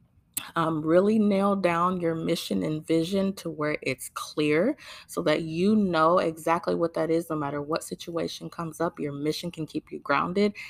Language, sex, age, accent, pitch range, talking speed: English, female, 20-39, American, 150-180 Hz, 180 wpm